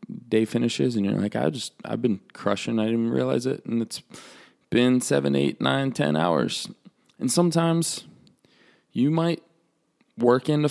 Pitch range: 110-160 Hz